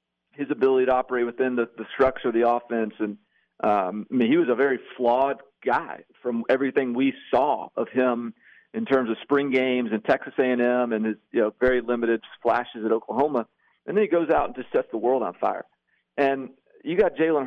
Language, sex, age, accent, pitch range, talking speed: English, male, 40-59, American, 115-135 Hz, 205 wpm